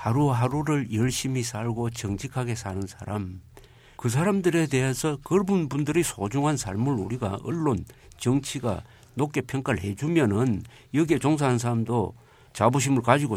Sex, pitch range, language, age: male, 115-145 Hz, Korean, 50-69